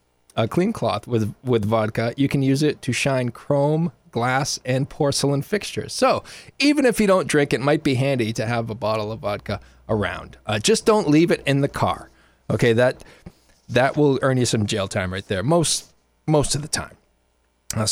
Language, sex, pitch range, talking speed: English, male, 115-145 Hz, 200 wpm